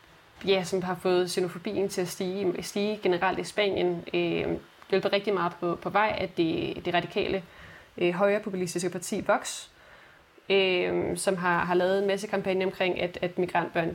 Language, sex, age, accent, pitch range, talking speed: Danish, female, 20-39, native, 180-210 Hz, 175 wpm